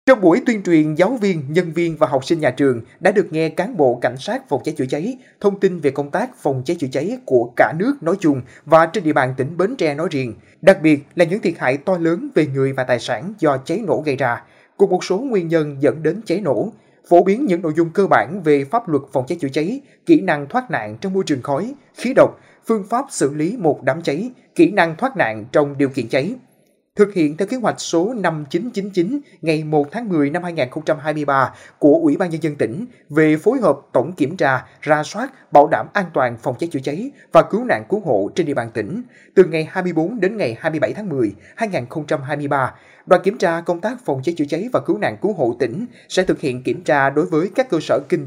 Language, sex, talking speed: Vietnamese, male, 240 wpm